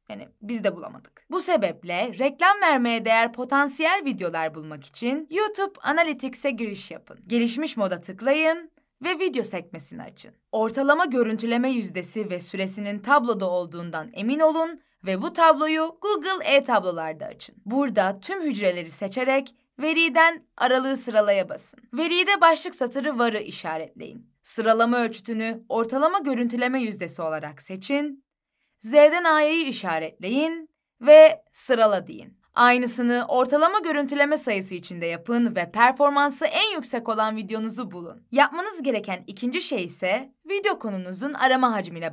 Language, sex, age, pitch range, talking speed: Turkish, female, 10-29, 195-295 Hz, 125 wpm